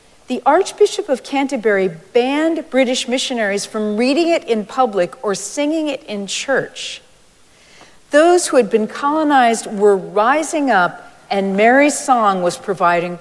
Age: 50-69